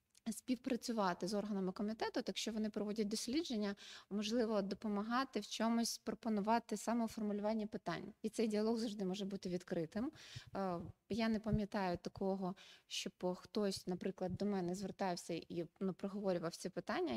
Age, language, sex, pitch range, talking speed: 20-39, Ukrainian, female, 190-225 Hz, 130 wpm